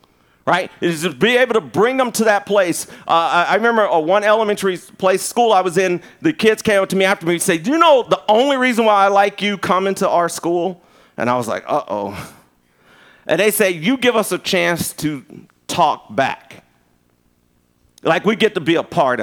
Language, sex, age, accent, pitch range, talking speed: English, male, 40-59, American, 145-210 Hz, 220 wpm